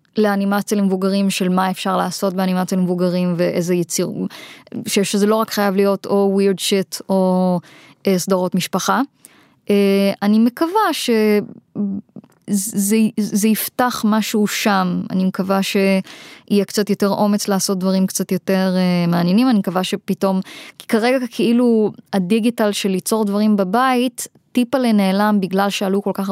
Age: 20-39